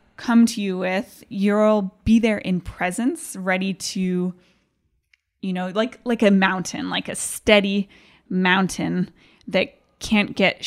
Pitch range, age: 185-230 Hz, 20-39